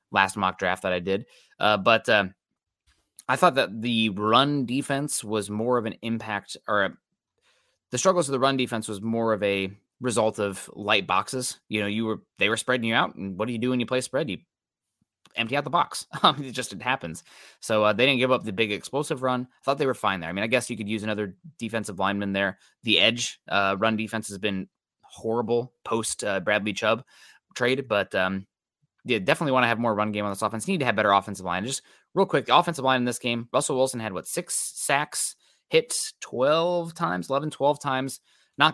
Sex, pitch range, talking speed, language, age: male, 105-130 Hz, 225 wpm, English, 20-39